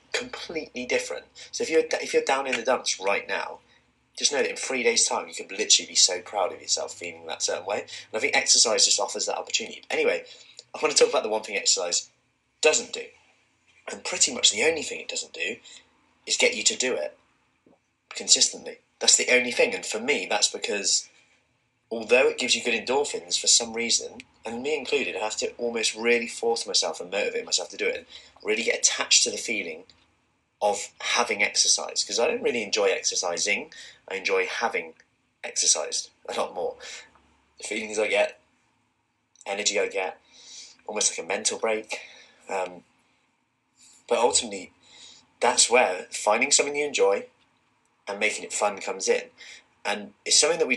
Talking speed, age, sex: 185 wpm, 20-39, male